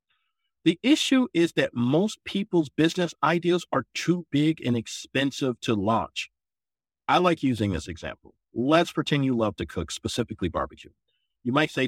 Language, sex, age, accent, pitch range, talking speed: English, male, 50-69, American, 115-190 Hz, 155 wpm